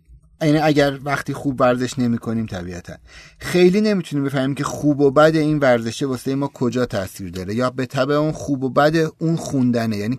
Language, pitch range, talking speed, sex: Persian, 130-165 Hz, 185 wpm, male